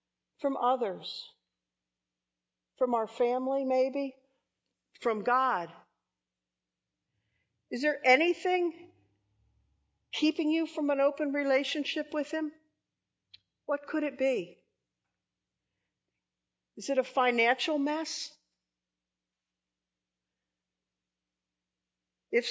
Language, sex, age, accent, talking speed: English, female, 50-69, American, 75 wpm